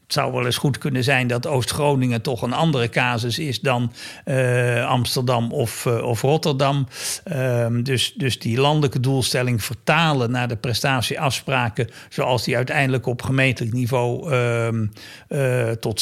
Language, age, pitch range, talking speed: Dutch, 60-79, 120-145 Hz, 140 wpm